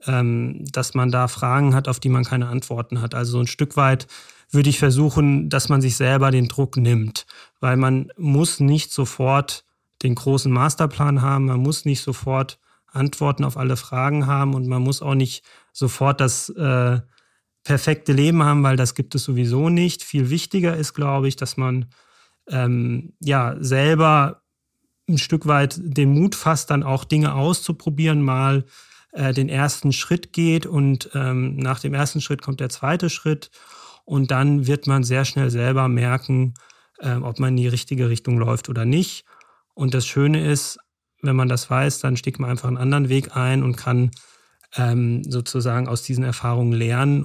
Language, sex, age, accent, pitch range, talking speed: German, male, 30-49, German, 125-145 Hz, 175 wpm